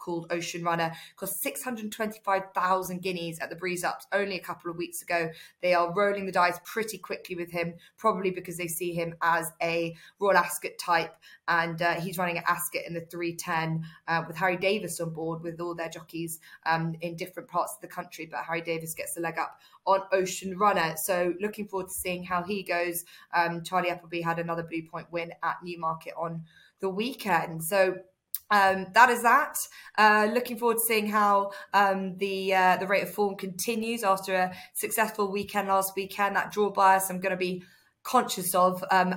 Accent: British